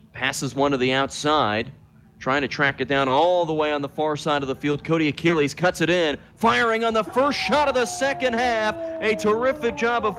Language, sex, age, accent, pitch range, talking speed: English, male, 40-59, American, 150-205 Hz, 225 wpm